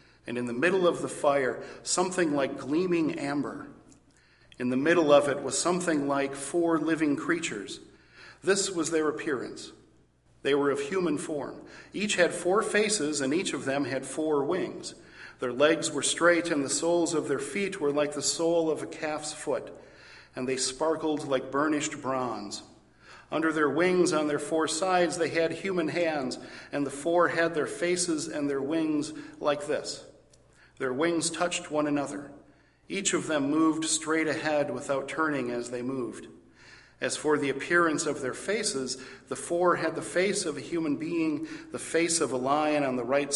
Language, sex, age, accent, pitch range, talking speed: English, male, 50-69, American, 140-170 Hz, 175 wpm